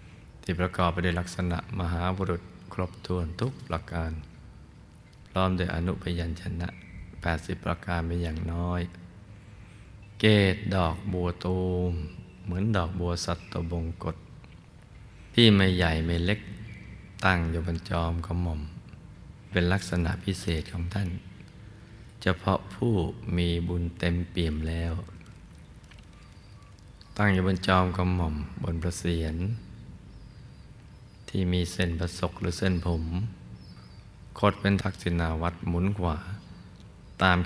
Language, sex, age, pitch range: Thai, male, 20-39, 85-95 Hz